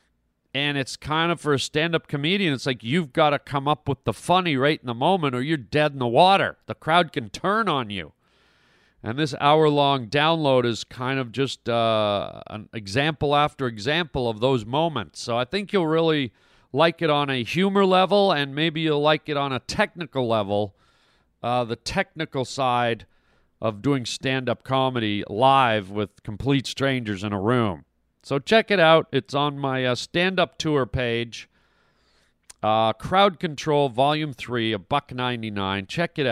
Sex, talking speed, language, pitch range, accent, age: male, 175 wpm, English, 115-155 Hz, American, 40-59